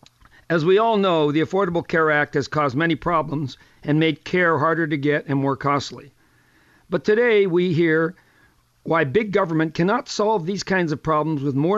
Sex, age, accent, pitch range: male, 50-69, American, 145-180 Hz